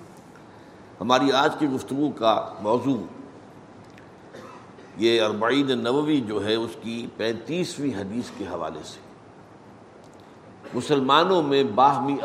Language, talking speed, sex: Urdu, 105 wpm, male